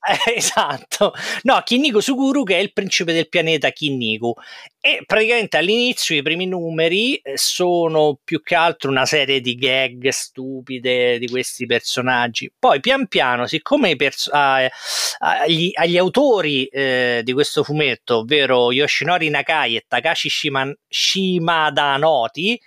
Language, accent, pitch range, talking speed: Italian, native, 130-200 Hz, 130 wpm